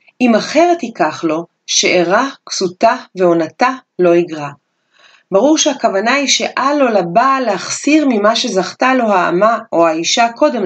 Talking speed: 130 wpm